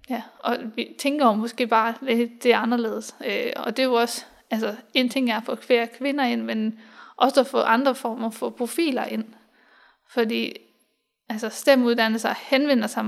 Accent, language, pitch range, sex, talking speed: native, Danish, 230-260 Hz, female, 170 wpm